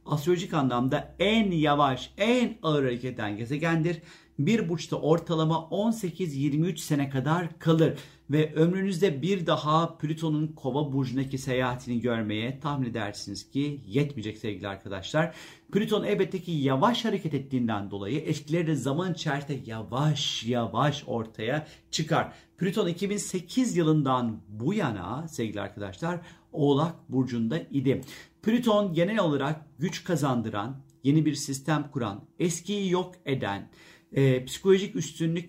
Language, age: Turkish, 50-69